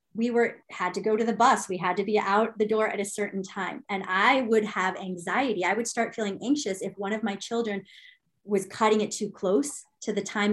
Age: 30-49